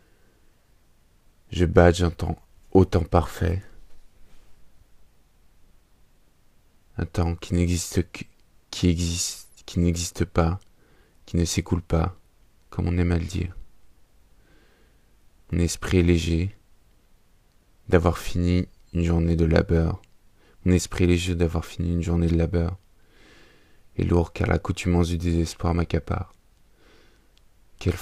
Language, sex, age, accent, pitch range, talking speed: French, male, 20-39, French, 85-95 Hz, 120 wpm